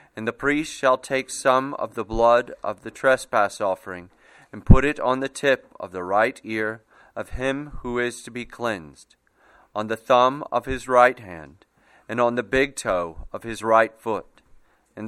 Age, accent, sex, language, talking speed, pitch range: 40-59, American, male, English, 185 wpm, 110-135 Hz